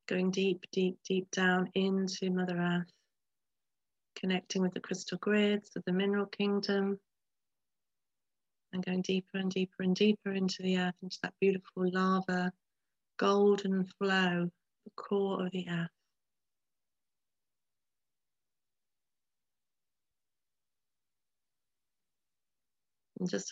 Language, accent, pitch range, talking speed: English, British, 185-195 Hz, 100 wpm